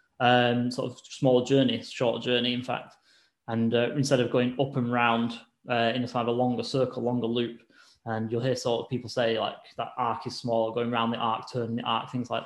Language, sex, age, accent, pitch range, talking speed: English, male, 10-29, British, 120-135 Hz, 230 wpm